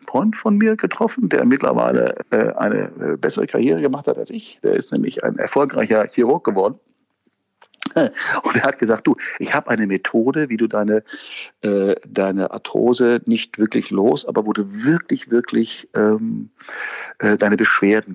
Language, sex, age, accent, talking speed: German, male, 50-69, German, 160 wpm